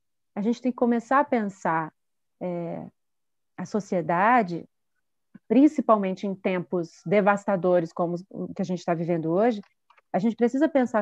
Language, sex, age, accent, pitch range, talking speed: Portuguese, female, 30-49, Brazilian, 195-255 Hz, 135 wpm